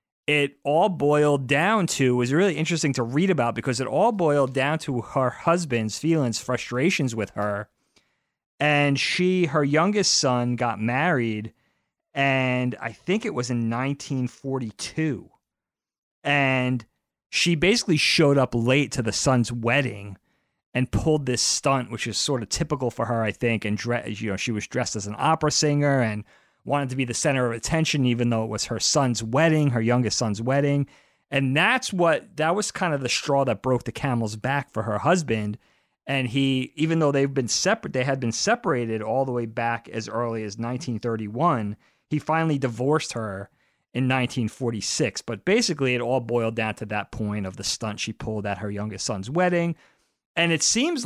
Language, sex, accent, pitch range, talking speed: English, male, American, 115-150 Hz, 180 wpm